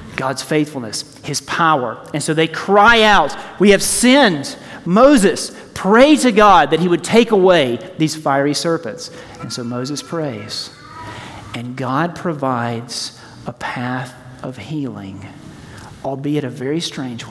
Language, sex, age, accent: English, male, 40-59, American